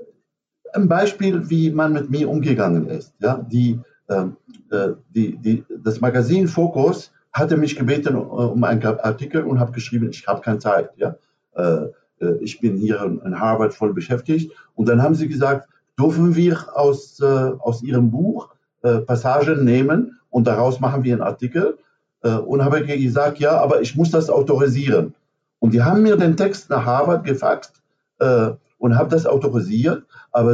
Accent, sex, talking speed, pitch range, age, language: German, male, 165 wpm, 120-150 Hz, 60-79, German